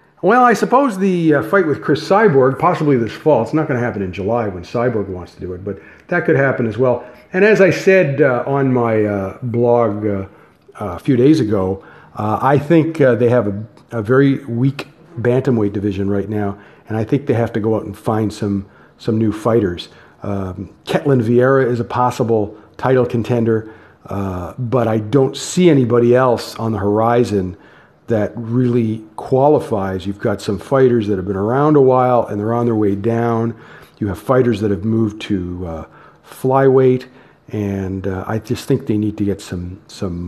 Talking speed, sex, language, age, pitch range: 195 wpm, male, English, 50-69, 100-140 Hz